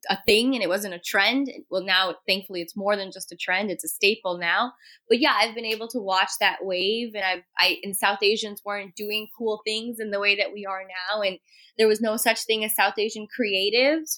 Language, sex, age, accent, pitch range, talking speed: English, female, 10-29, American, 185-215 Hz, 235 wpm